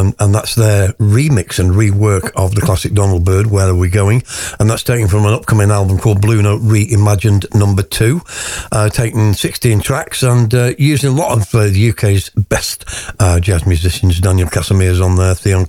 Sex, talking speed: male, 185 wpm